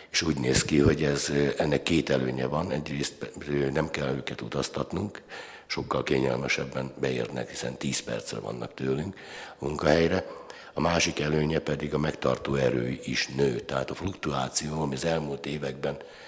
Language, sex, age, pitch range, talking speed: Hungarian, male, 60-79, 65-75 Hz, 150 wpm